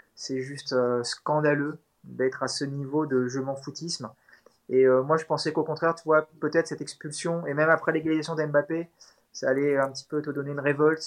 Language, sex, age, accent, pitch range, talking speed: French, male, 20-39, French, 135-165 Hz, 205 wpm